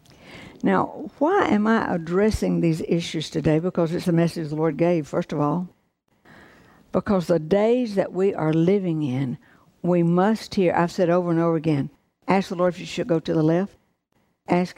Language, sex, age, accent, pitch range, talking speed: English, female, 60-79, American, 170-205 Hz, 185 wpm